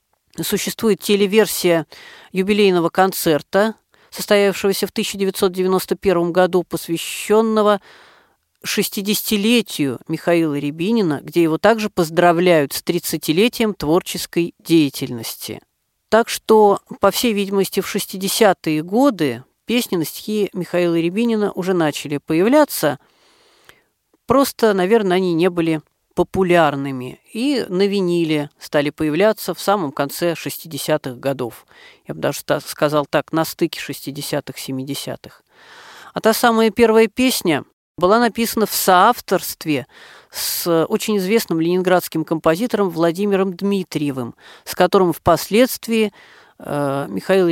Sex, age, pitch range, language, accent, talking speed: female, 40-59, 160-210 Hz, Russian, native, 100 wpm